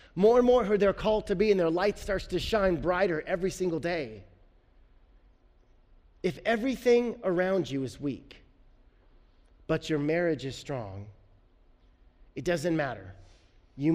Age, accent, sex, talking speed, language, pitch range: 30-49, American, male, 140 wpm, English, 115-165 Hz